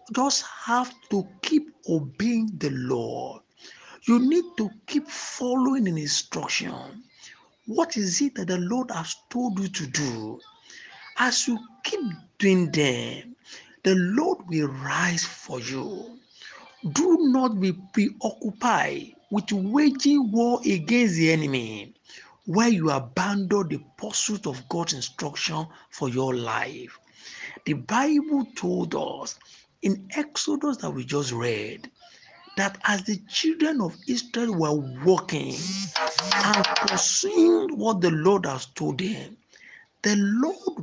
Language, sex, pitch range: English, male, 165-260 Hz